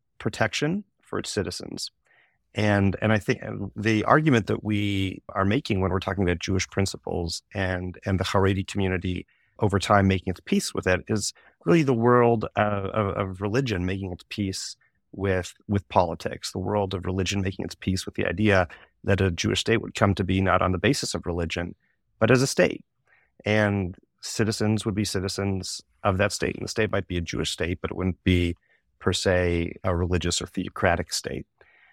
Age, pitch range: 30-49, 95-110 Hz